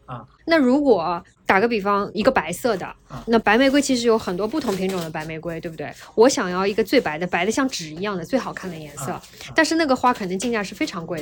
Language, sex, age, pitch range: Chinese, female, 20-39, 195-280 Hz